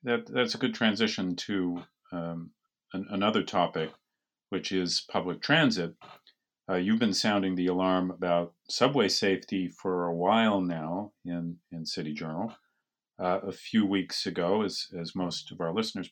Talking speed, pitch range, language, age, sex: 155 wpm, 90-105 Hz, English, 40-59, male